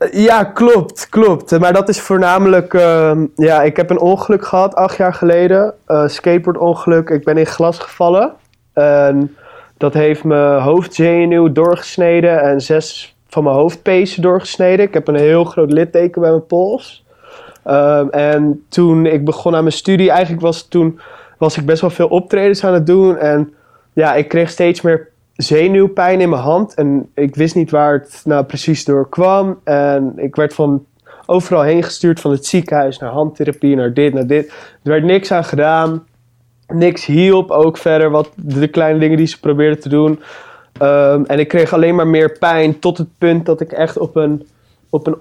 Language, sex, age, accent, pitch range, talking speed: Dutch, male, 20-39, Dutch, 150-175 Hz, 185 wpm